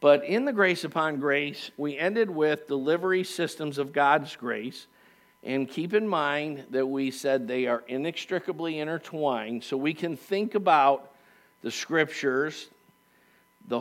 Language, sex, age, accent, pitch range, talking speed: English, male, 50-69, American, 130-165 Hz, 145 wpm